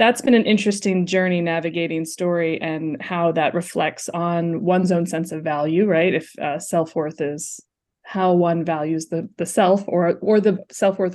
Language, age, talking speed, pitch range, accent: English, 20-39, 170 wpm, 170-200 Hz, American